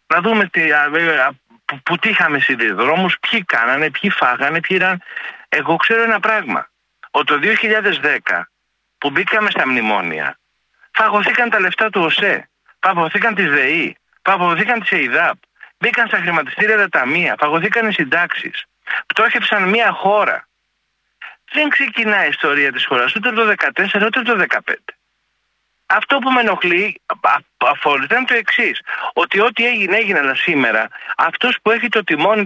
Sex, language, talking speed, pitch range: male, Greek, 150 wpm, 185-245 Hz